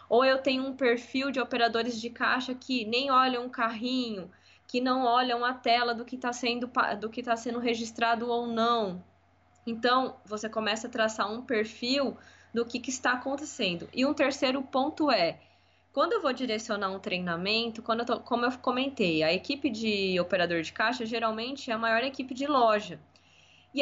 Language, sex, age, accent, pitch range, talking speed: Portuguese, female, 10-29, Brazilian, 220-265 Hz, 170 wpm